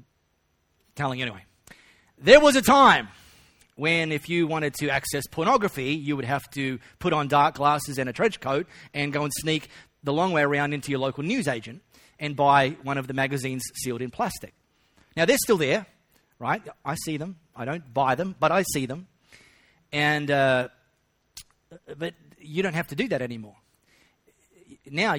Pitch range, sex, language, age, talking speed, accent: 120-145 Hz, male, English, 30-49, 175 wpm, Australian